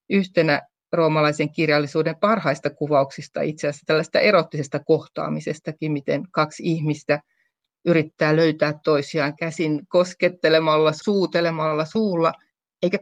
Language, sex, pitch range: Finnish, female, 150-175 Hz